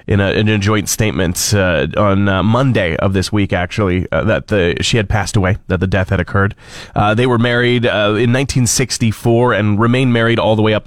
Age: 30-49